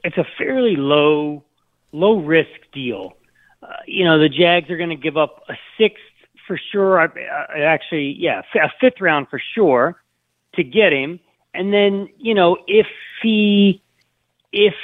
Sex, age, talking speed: male, 40-59, 170 wpm